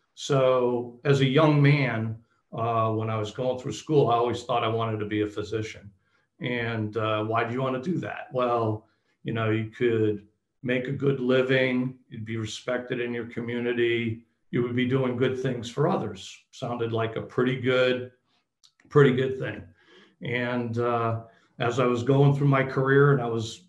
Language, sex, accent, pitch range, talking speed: English, male, American, 115-135 Hz, 185 wpm